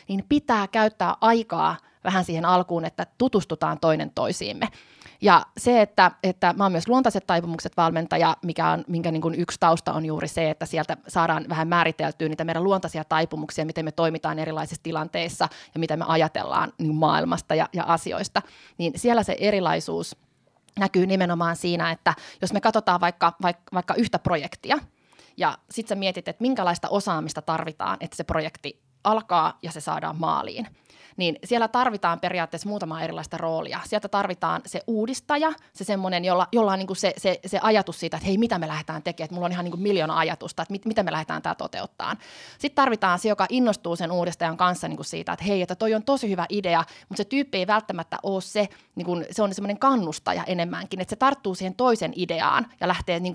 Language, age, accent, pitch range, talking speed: Finnish, 30-49, native, 165-205 Hz, 190 wpm